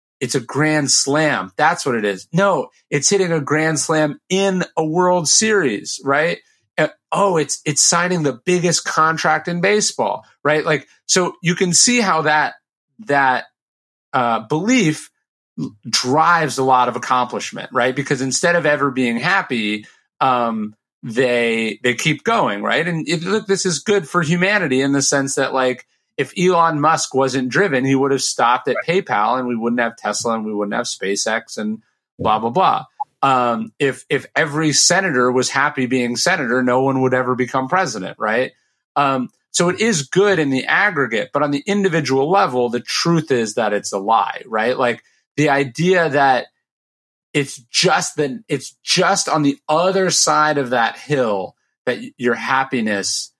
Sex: male